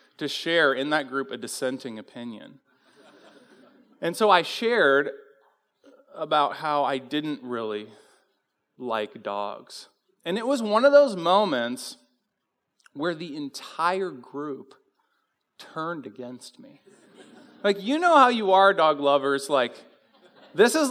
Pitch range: 135-220 Hz